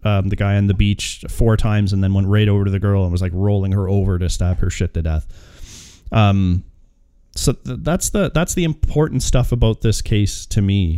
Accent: American